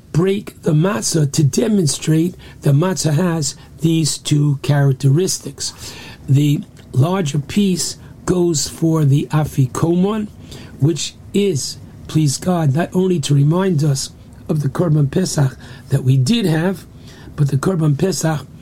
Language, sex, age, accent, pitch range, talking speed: English, male, 60-79, American, 135-165 Hz, 125 wpm